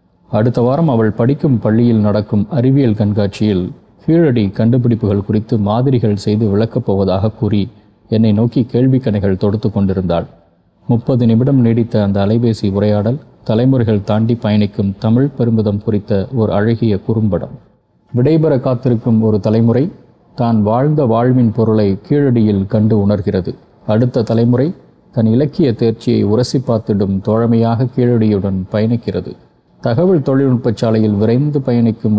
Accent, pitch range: native, 105-125 Hz